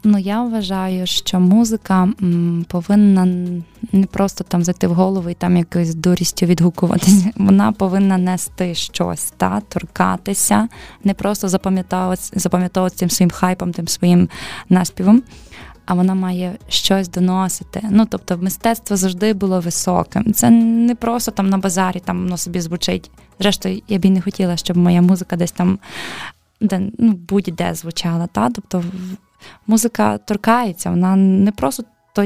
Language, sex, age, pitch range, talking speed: Ukrainian, female, 20-39, 180-205 Hz, 140 wpm